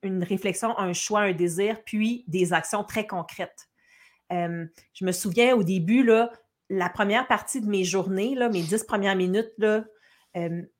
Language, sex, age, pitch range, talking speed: French, female, 40-59, 180-220 Hz, 155 wpm